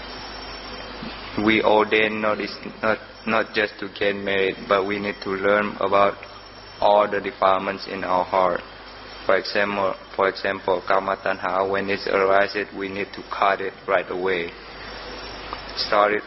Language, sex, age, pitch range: Thai, male, 20-39, 95-105 Hz